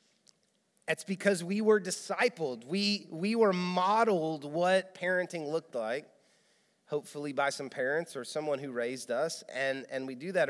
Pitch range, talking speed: 165-215 Hz, 155 wpm